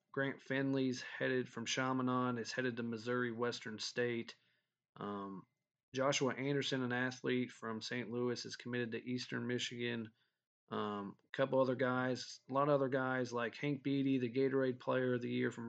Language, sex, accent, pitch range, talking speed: English, male, American, 115-130 Hz, 170 wpm